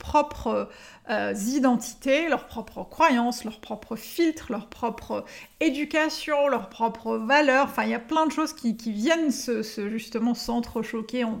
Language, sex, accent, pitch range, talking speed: French, female, French, 220-270 Hz, 160 wpm